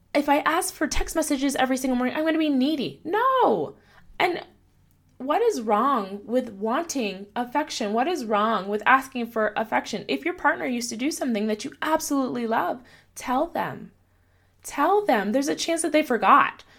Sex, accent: female, American